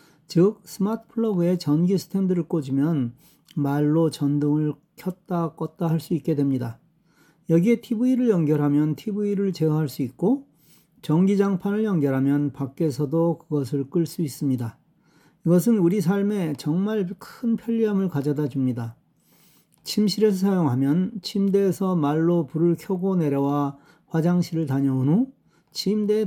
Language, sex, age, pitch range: Korean, male, 40-59, 150-185 Hz